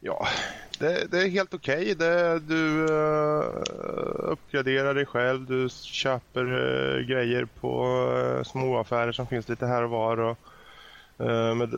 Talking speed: 145 wpm